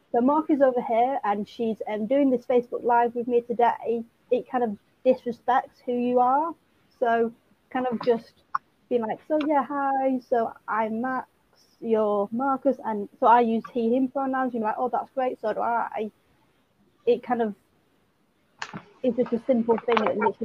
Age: 30-49